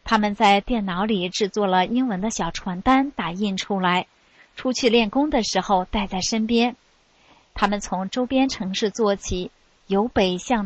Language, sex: Chinese, female